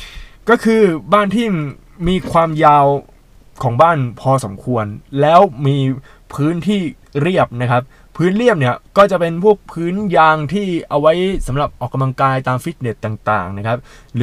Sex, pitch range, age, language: male, 130-175 Hz, 20-39, Thai